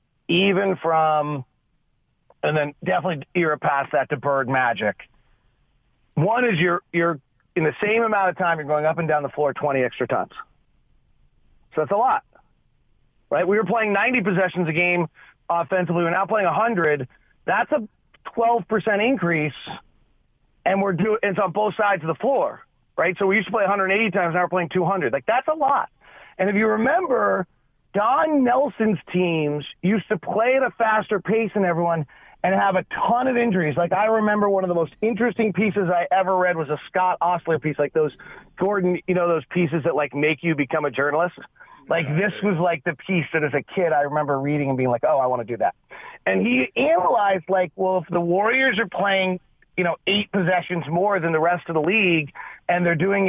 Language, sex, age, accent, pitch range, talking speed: English, male, 40-59, American, 160-200 Hz, 205 wpm